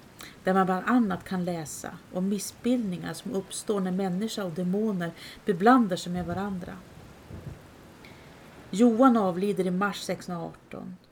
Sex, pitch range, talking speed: female, 180-235 Hz, 125 wpm